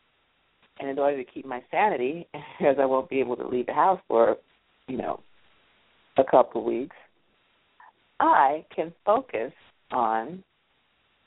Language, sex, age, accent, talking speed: English, female, 50-69, American, 140 wpm